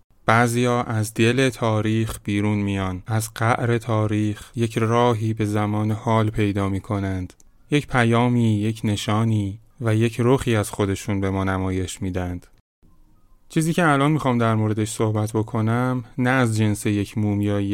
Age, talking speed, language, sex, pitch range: 30-49, 150 wpm, Persian, male, 105-120 Hz